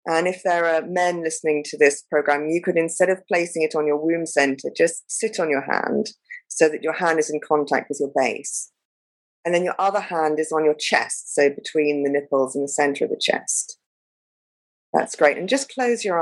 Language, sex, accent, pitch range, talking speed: English, female, British, 155-220 Hz, 220 wpm